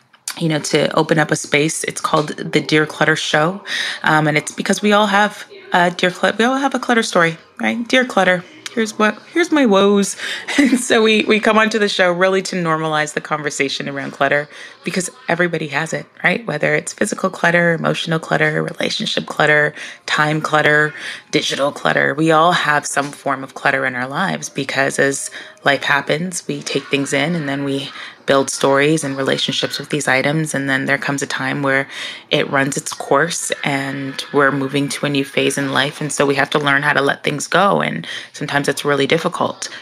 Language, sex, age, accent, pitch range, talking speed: English, female, 20-39, American, 140-185 Hz, 200 wpm